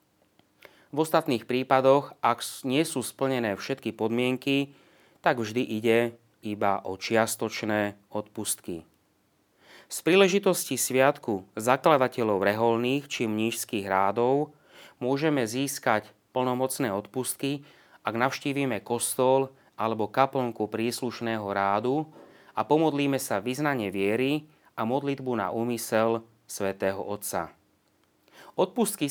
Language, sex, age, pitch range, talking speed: Slovak, male, 30-49, 105-130 Hz, 95 wpm